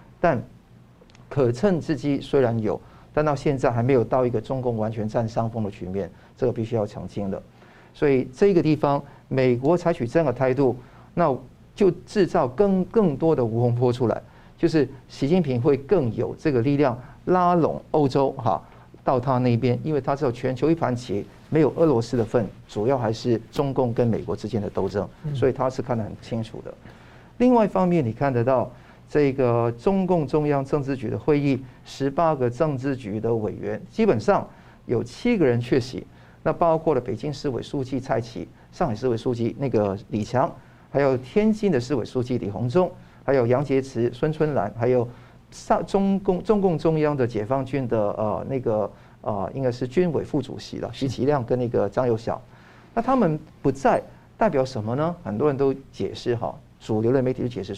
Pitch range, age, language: 115-150 Hz, 50-69, Chinese